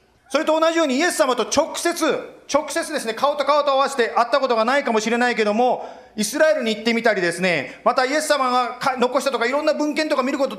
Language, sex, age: Japanese, male, 40-59